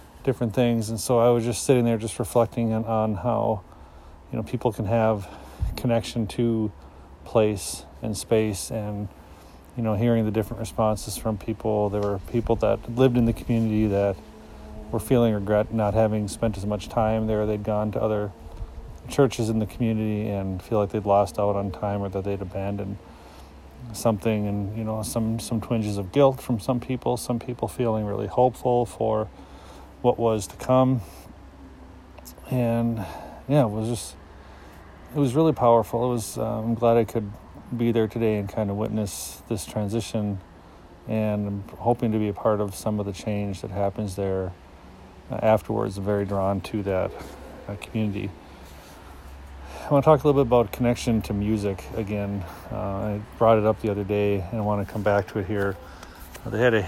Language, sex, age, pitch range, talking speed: English, male, 30-49, 95-115 Hz, 180 wpm